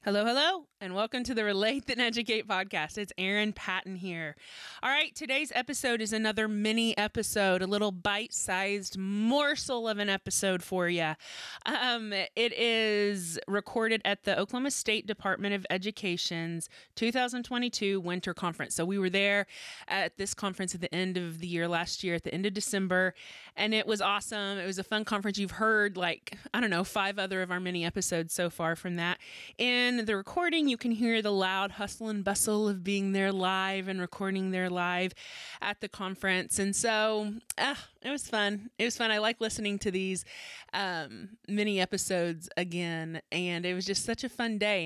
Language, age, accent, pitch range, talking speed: English, 20-39, American, 185-230 Hz, 185 wpm